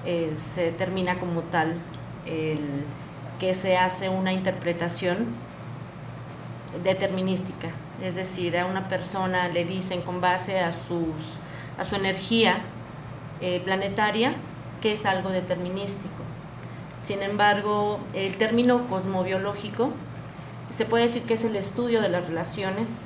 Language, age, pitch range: Spanish, 30-49, 175-205 Hz